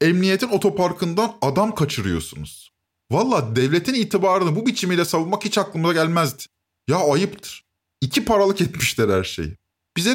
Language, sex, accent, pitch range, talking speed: Turkish, male, native, 115-190 Hz, 125 wpm